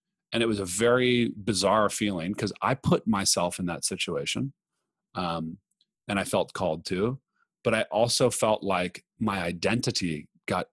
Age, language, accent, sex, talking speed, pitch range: 30-49, English, American, male, 155 wpm, 90-115 Hz